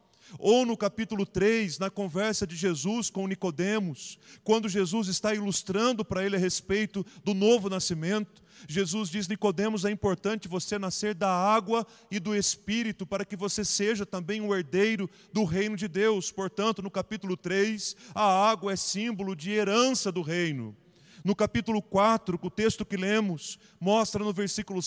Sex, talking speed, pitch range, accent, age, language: male, 160 wpm, 185-210 Hz, Brazilian, 40-59, Portuguese